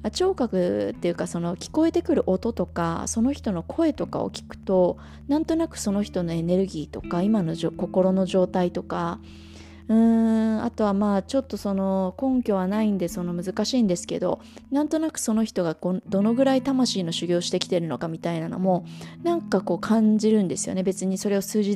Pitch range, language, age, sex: 180-220 Hz, Japanese, 20-39, female